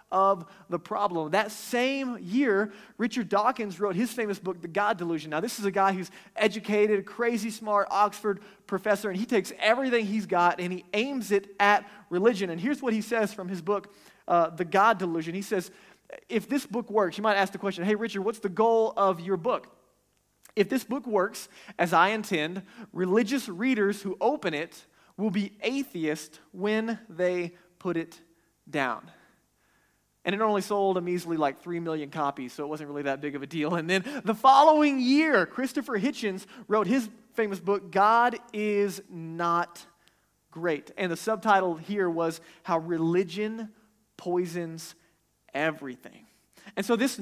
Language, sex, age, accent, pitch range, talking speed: English, male, 30-49, American, 180-225 Hz, 170 wpm